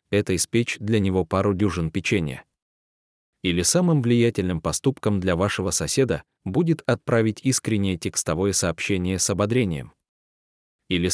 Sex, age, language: male, 20-39, Russian